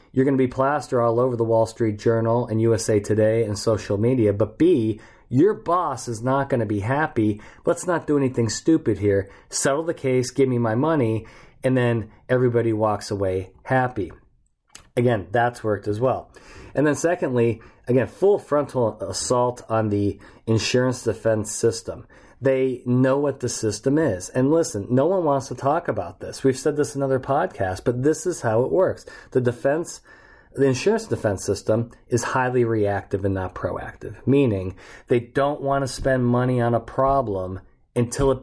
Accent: American